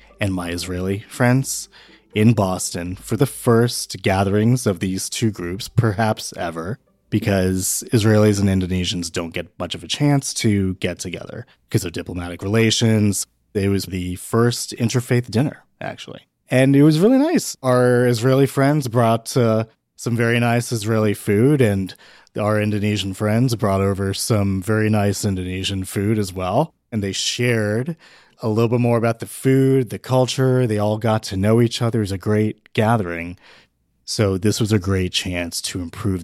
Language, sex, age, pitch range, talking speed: English, male, 20-39, 95-125 Hz, 165 wpm